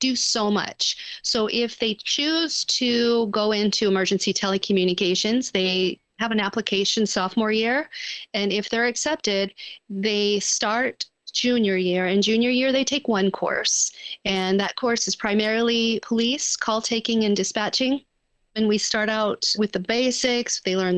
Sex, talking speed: female, 145 wpm